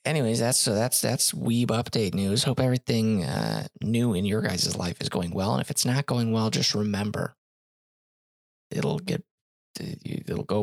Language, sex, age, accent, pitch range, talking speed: English, male, 20-39, American, 105-130 Hz, 175 wpm